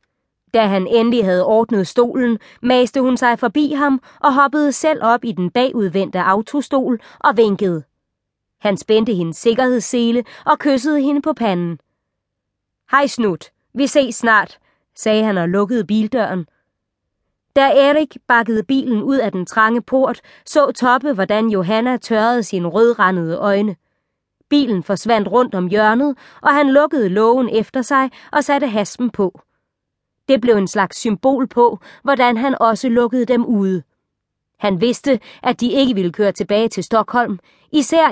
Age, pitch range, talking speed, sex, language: 20-39, 200-260 Hz, 150 wpm, female, Danish